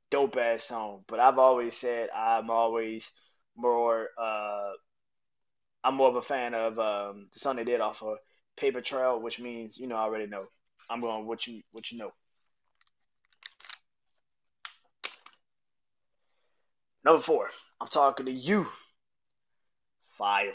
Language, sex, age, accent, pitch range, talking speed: English, male, 20-39, American, 110-135 Hz, 140 wpm